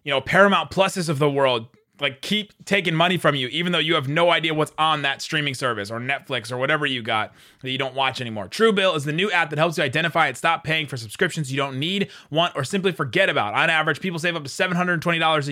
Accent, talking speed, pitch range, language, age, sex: American, 250 wpm, 135-175 Hz, English, 20-39, male